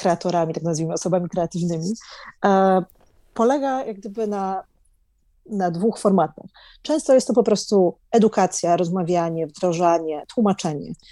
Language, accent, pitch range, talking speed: Polish, native, 170-205 Hz, 115 wpm